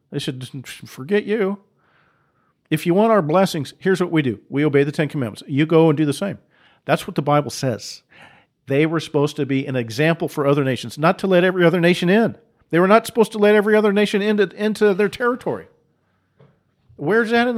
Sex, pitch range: male, 140-185 Hz